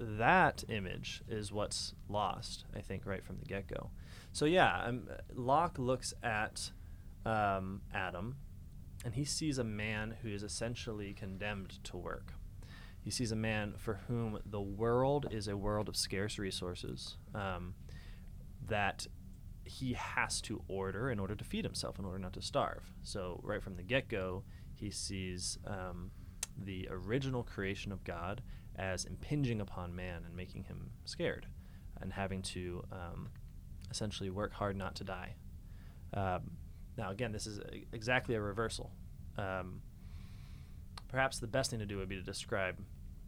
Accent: American